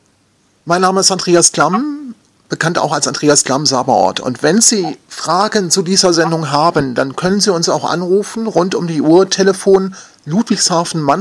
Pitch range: 150-195 Hz